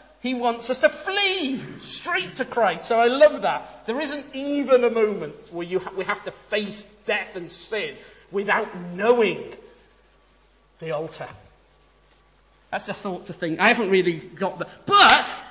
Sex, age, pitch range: male, 40-59, 175-245 Hz